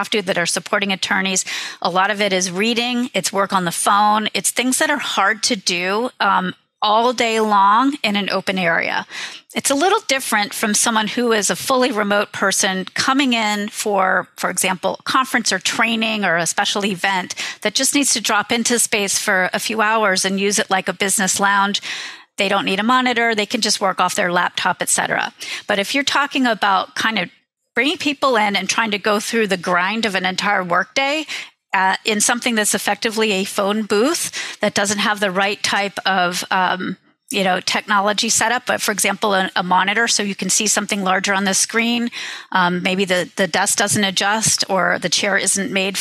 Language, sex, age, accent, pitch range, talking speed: English, female, 40-59, American, 190-225 Hz, 200 wpm